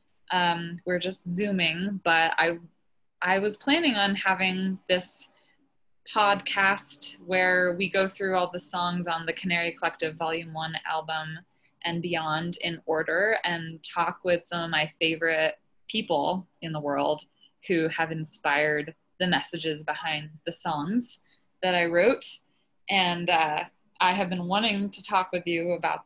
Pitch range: 160-185 Hz